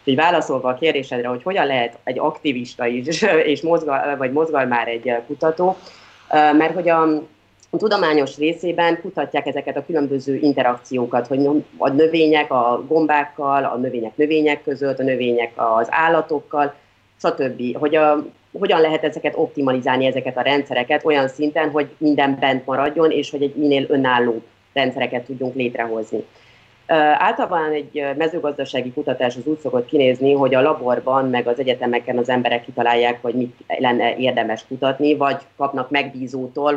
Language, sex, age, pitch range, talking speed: Hungarian, female, 30-49, 125-150 Hz, 145 wpm